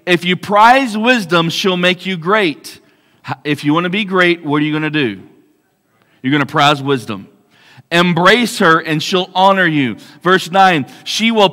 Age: 40-59